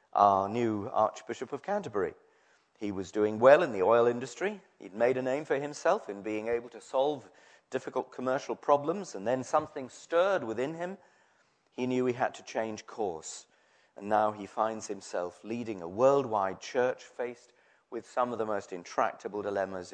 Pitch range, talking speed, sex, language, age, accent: 100-160 Hz, 170 wpm, male, English, 40-59, British